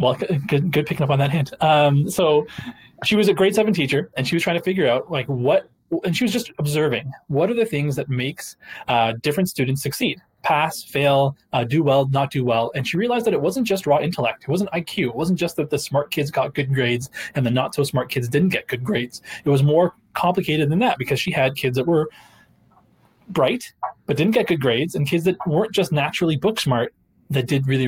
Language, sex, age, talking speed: English, male, 20-39, 235 wpm